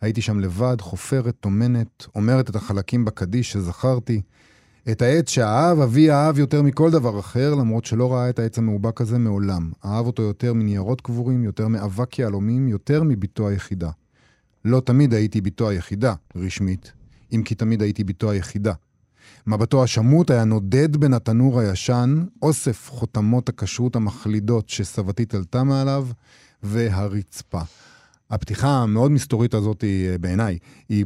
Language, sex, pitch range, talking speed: Hebrew, male, 105-130 Hz, 135 wpm